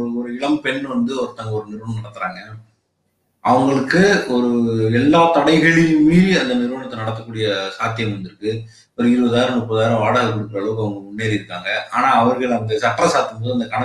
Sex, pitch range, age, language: male, 110-145 Hz, 30-49, Tamil